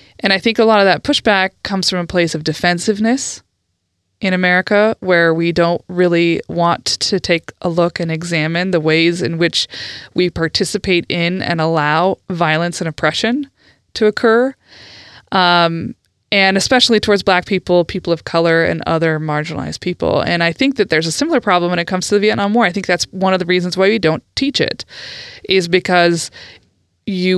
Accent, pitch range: American, 160-200 Hz